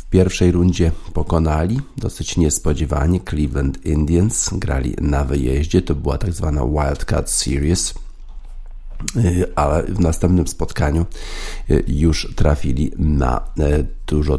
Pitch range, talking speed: 75-85 Hz, 105 wpm